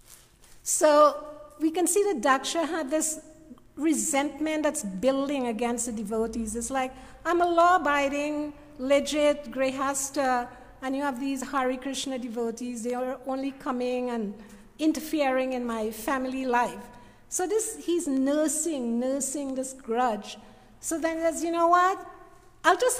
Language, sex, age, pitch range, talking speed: English, female, 50-69, 245-315 Hz, 140 wpm